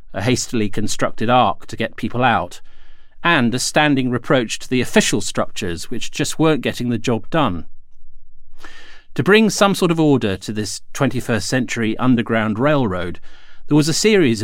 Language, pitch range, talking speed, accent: English, 110-145 Hz, 160 wpm, British